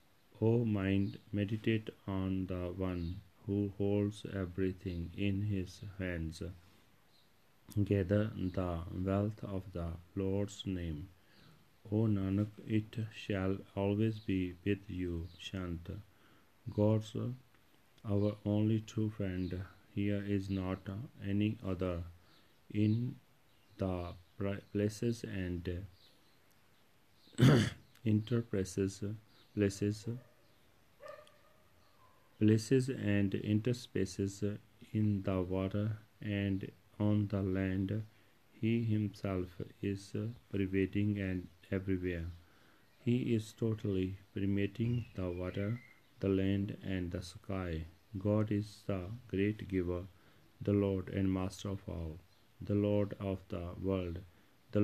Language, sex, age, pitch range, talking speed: Punjabi, male, 40-59, 95-105 Hz, 95 wpm